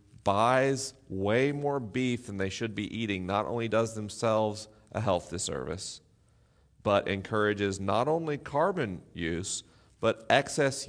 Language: English